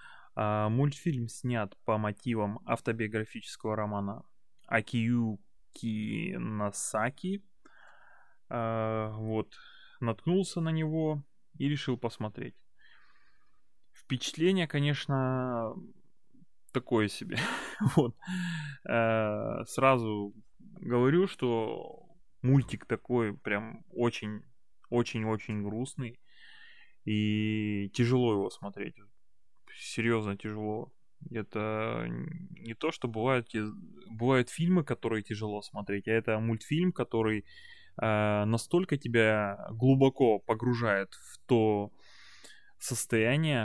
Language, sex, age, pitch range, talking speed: Russian, male, 20-39, 110-135 Hz, 75 wpm